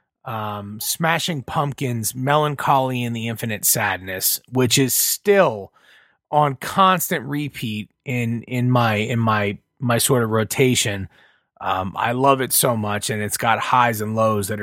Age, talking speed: 30-49, 150 wpm